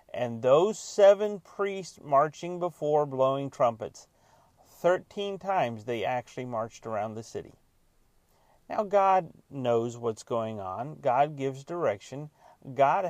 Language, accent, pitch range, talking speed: English, American, 125-175 Hz, 120 wpm